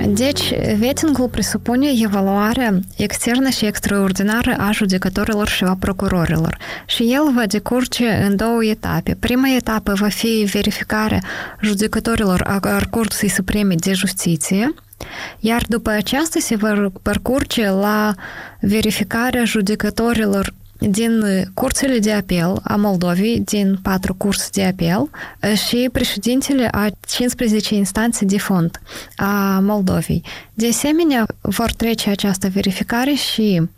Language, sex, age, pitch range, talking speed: Romanian, female, 20-39, 200-230 Hz, 115 wpm